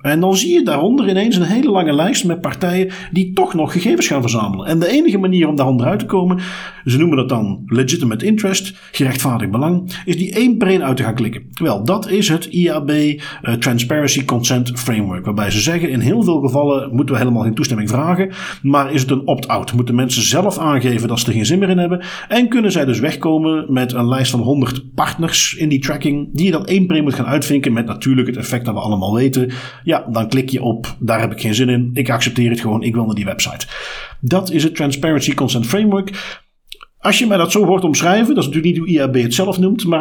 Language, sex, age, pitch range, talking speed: Dutch, male, 40-59, 120-170 Hz, 235 wpm